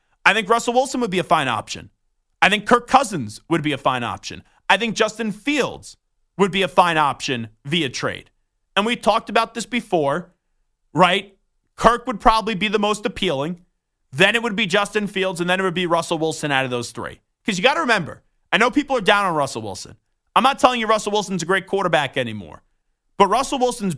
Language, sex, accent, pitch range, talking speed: English, male, American, 170-225 Hz, 215 wpm